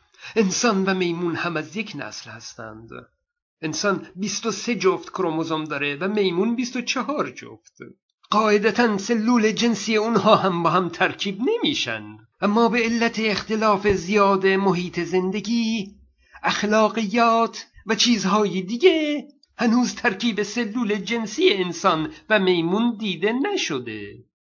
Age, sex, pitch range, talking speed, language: 50-69, male, 185-230 Hz, 115 wpm, Persian